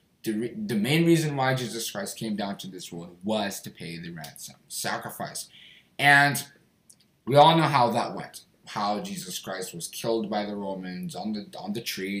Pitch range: 115-170 Hz